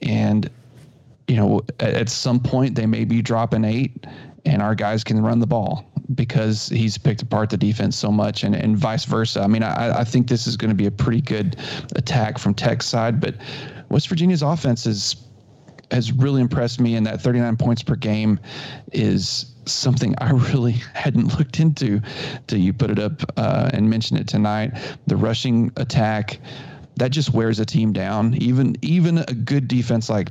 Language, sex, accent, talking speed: English, male, American, 185 wpm